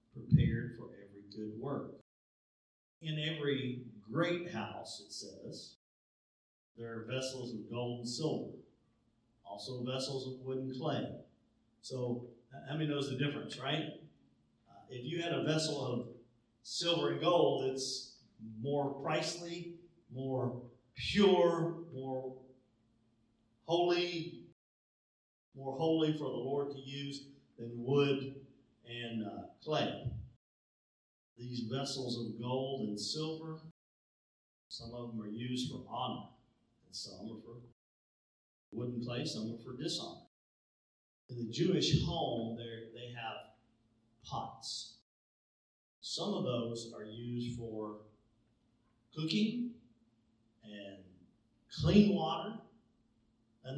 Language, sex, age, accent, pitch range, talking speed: English, male, 50-69, American, 115-140 Hz, 115 wpm